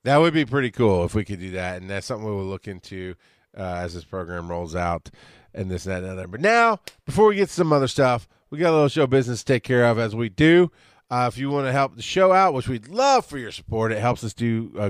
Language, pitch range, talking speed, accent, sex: English, 105-150 Hz, 280 wpm, American, male